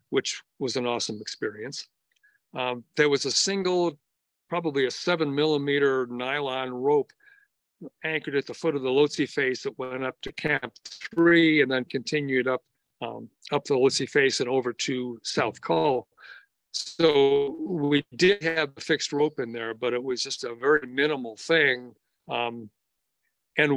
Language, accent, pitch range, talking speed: English, American, 130-170 Hz, 160 wpm